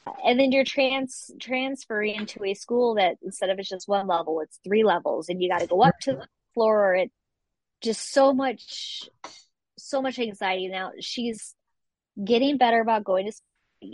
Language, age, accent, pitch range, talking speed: English, 20-39, American, 185-255 Hz, 180 wpm